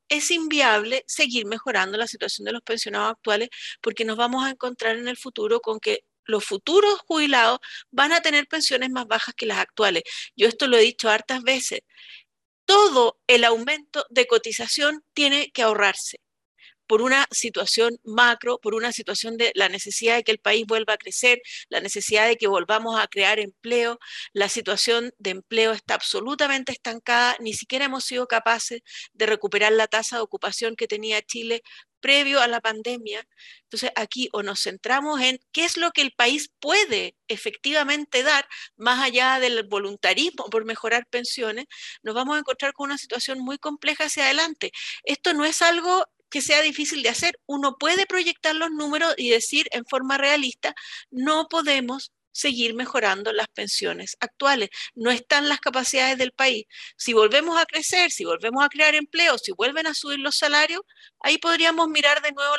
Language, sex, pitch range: Spanish, female, 225-295 Hz